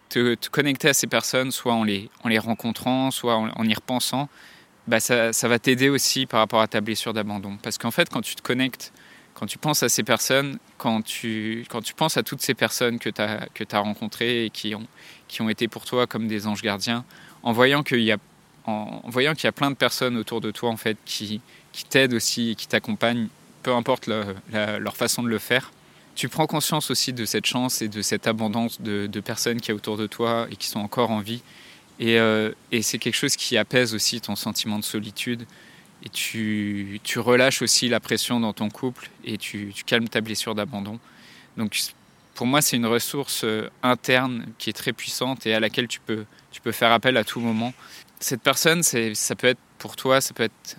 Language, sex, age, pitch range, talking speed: French, male, 20-39, 110-125 Hz, 225 wpm